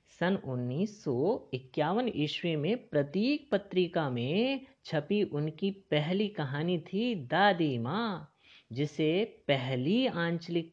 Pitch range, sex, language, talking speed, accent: 125-175 Hz, female, Hindi, 95 wpm, native